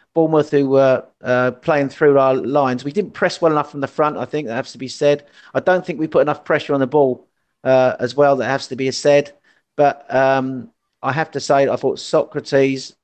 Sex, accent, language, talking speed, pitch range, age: male, British, English, 235 wpm, 130-150 Hz, 40-59